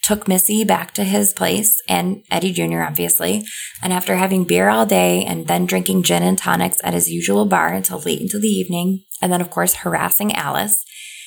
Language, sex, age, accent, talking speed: English, female, 20-39, American, 195 wpm